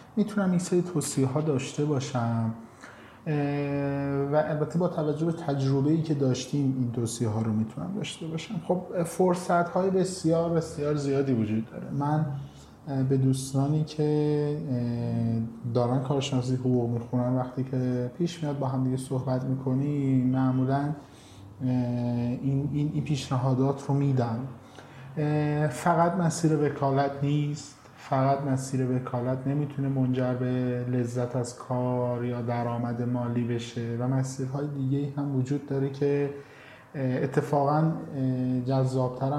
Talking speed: 125 wpm